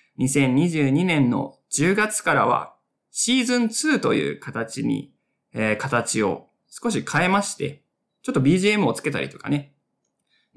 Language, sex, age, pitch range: Japanese, male, 20-39, 135-215 Hz